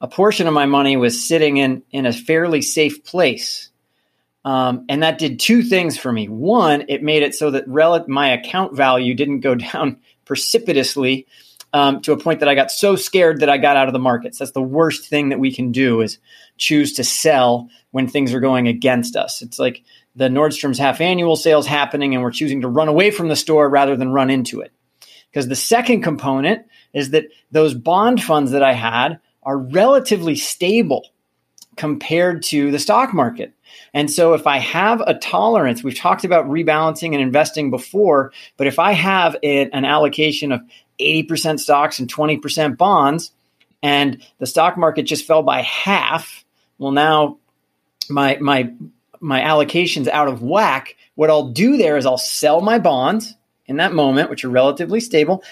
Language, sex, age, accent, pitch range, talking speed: English, male, 30-49, American, 135-160 Hz, 185 wpm